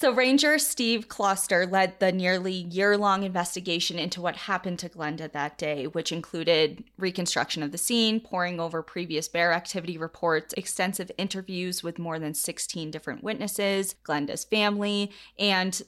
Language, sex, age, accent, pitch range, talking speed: English, female, 20-39, American, 160-195 Hz, 145 wpm